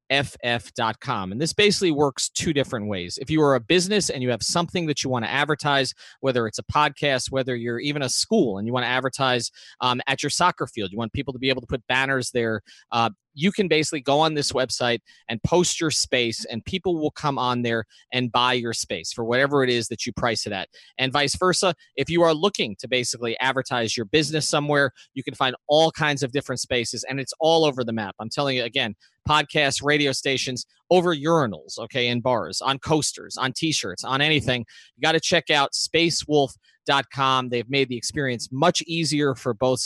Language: English